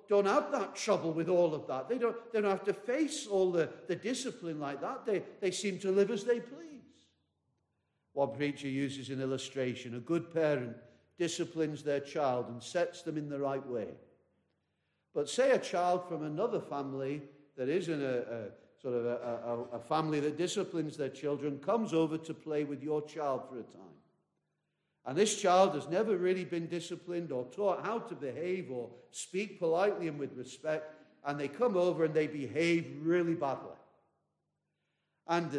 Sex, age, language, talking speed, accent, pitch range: male, 50-69, English, 180 wpm, British, 140-185 Hz